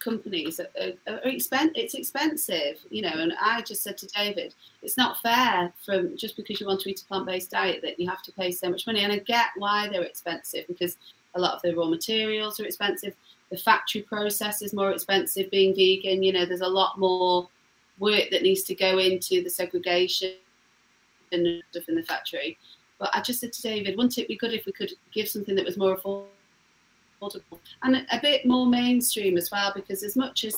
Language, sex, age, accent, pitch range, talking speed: English, female, 30-49, British, 180-220 Hz, 215 wpm